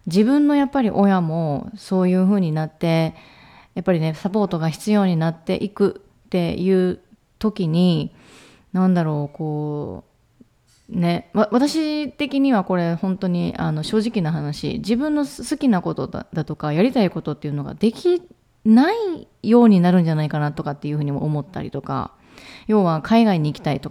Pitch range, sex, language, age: 155-215 Hz, female, Japanese, 30-49